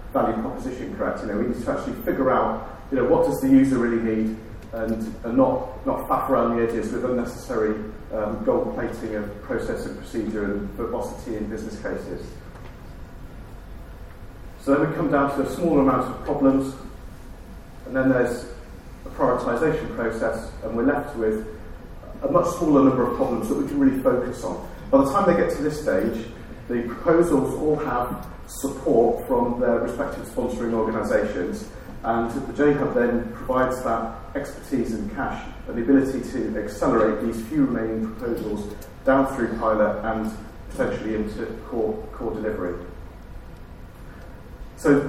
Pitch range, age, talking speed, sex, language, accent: 110-135 Hz, 40-59, 160 wpm, male, English, British